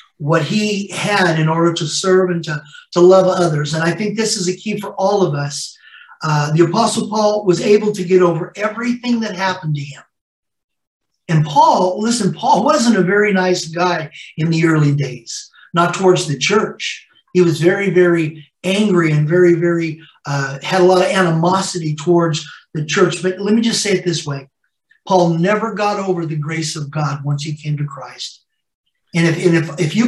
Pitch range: 165-205 Hz